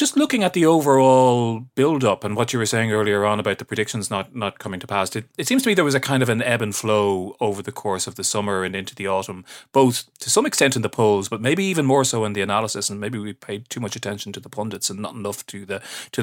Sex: male